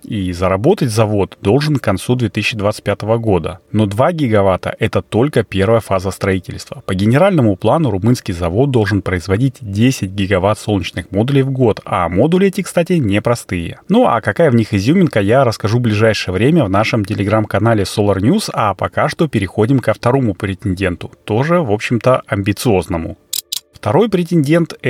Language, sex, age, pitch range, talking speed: Russian, male, 30-49, 100-135 Hz, 155 wpm